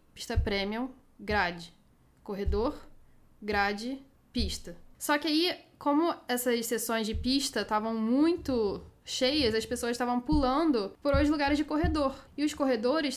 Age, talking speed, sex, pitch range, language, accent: 10-29, 130 wpm, female, 215-265 Hz, Portuguese, Brazilian